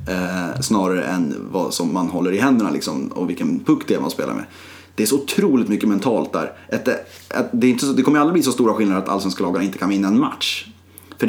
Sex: male